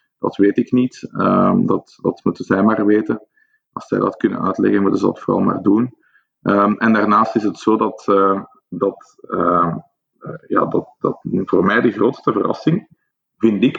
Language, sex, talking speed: Dutch, male, 185 wpm